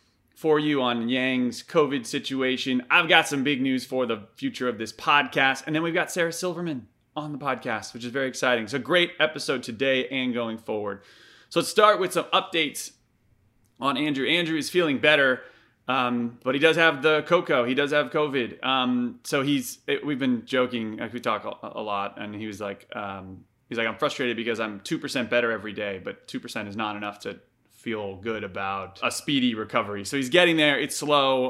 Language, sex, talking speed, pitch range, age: English, male, 200 wpm, 110-140 Hz, 30-49